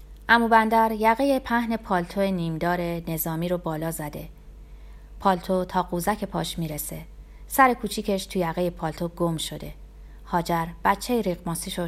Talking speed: 125 wpm